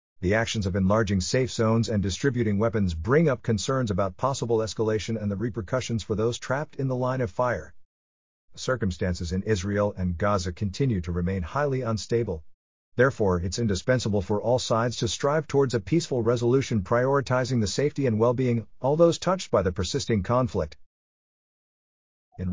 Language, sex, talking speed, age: English, male, 165 wpm, 50-69